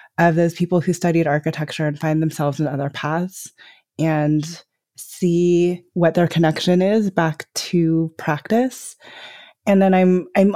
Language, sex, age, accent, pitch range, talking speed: English, female, 20-39, American, 145-175 Hz, 140 wpm